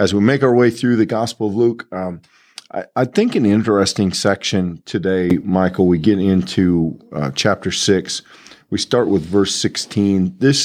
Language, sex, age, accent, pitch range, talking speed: English, male, 40-59, American, 95-125 Hz, 175 wpm